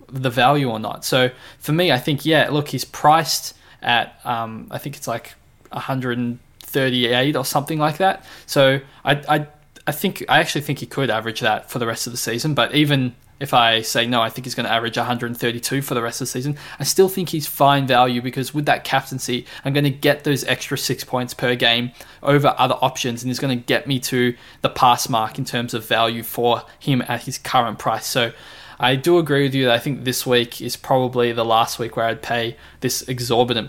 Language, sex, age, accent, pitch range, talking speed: English, male, 20-39, Australian, 120-140 Hz, 225 wpm